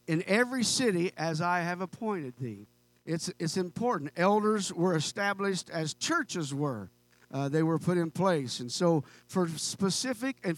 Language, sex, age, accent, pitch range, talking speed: English, male, 50-69, American, 155-200 Hz, 160 wpm